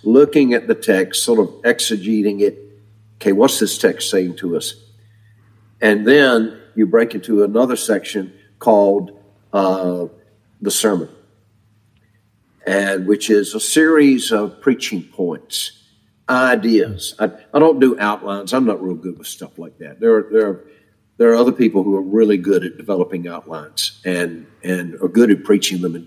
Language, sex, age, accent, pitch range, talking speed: English, male, 50-69, American, 95-115 Hz, 165 wpm